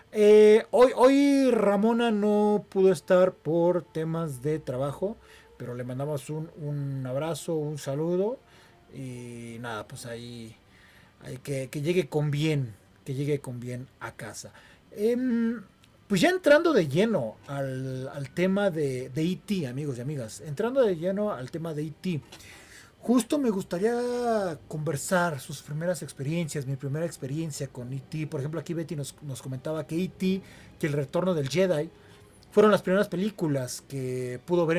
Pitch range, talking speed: 135-185 Hz, 155 wpm